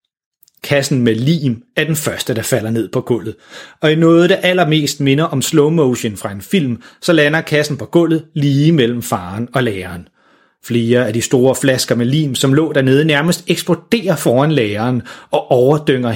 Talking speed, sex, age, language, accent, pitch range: 180 wpm, male, 30-49, Danish, native, 120-165 Hz